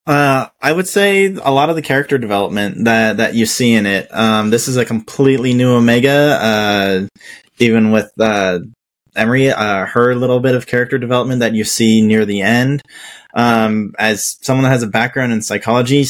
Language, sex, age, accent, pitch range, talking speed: English, male, 20-39, American, 110-120 Hz, 185 wpm